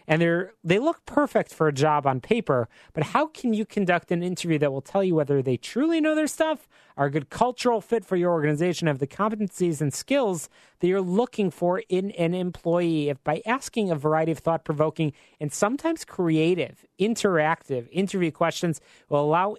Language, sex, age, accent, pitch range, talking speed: English, male, 30-49, American, 140-185 Hz, 190 wpm